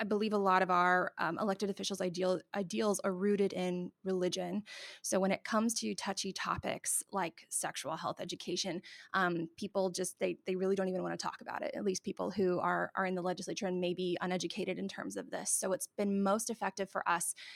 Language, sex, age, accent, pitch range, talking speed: English, female, 20-39, American, 180-200 Hz, 210 wpm